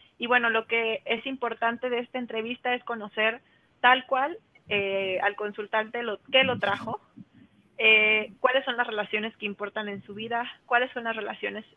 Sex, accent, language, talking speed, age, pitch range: female, Mexican, Spanish, 170 wpm, 30-49, 205-240 Hz